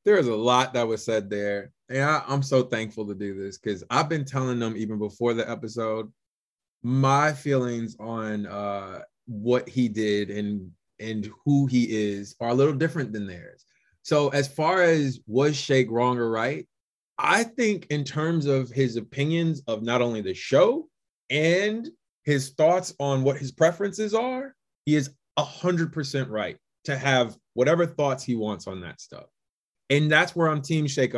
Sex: male